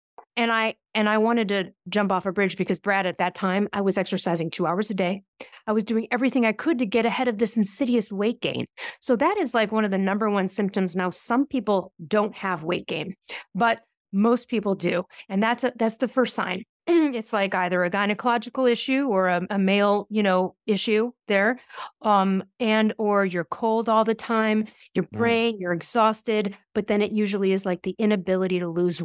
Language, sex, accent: English, female, American